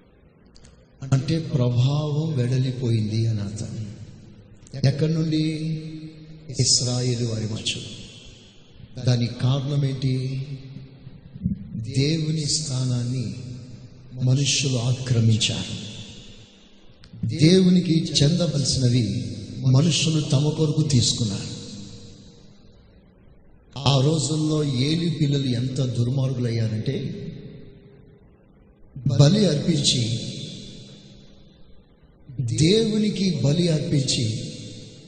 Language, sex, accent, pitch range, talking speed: Telugu, male, native, 120-150 Hz, 55 wpm